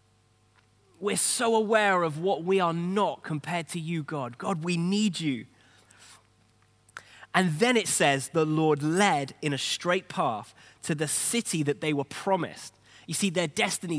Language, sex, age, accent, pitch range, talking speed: English, male, 20-39, British, 125-190 Hz, 165 wpm